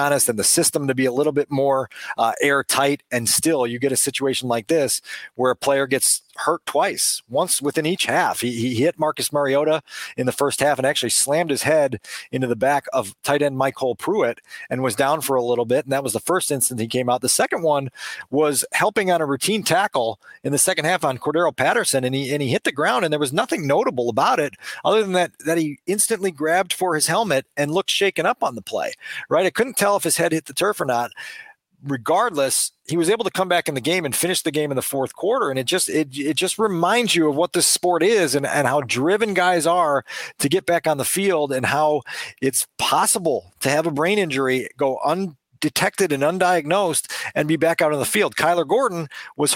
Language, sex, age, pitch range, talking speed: English, male, 40-59, 135-170 Hz, 235 wpm